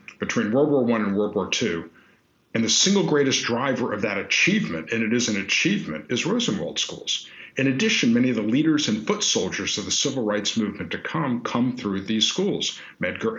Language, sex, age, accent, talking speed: English, male, 50-69, American, 200 wpm